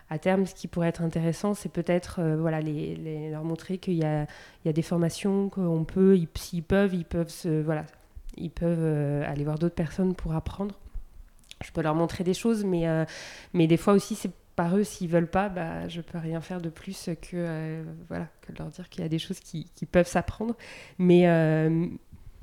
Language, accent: French, French